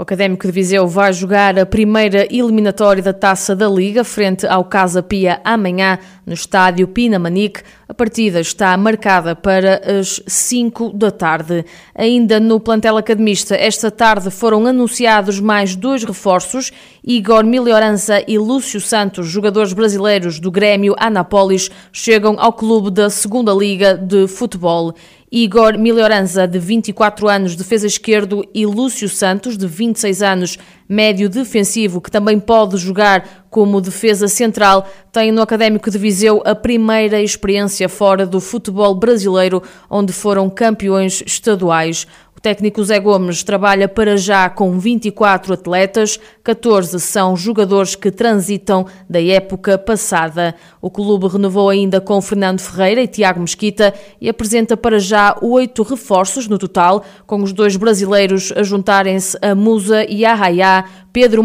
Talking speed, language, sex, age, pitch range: 140 wpm, Portuguese, female, 20-39, 190-220 Hz